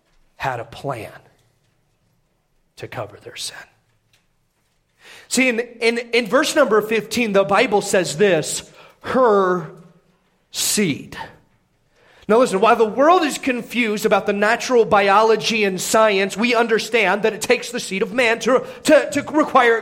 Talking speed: 140 wpm